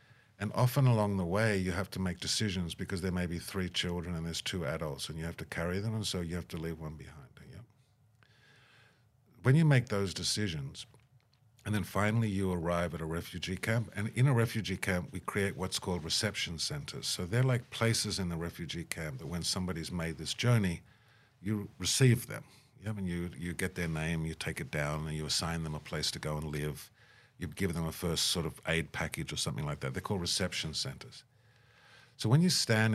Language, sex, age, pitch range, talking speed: English, male, 50-69, 85-120 Hz, 210 wpm